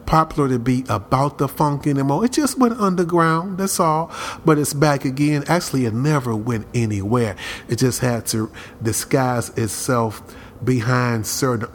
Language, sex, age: English, male, 40-59